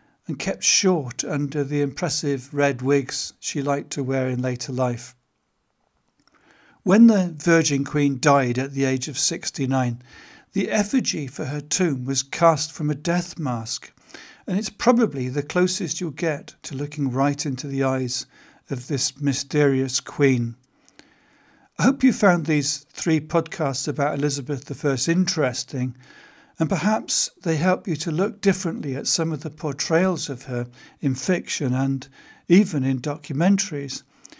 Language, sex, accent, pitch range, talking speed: English, male, British, 135-170 Hz, 150 wpm